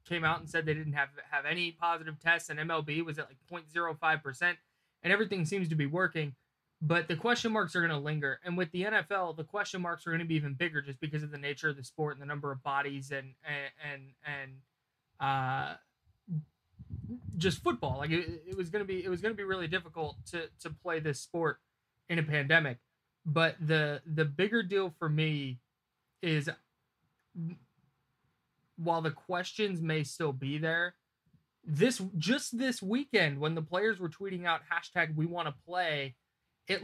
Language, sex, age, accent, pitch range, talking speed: English, male, 20-39, American, 140-170 Hz, 190 wpm